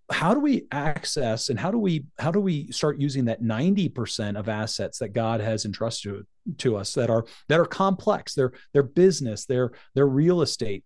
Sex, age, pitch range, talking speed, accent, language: male, 40-59, 120-145 Hz, 200 wpm, American, English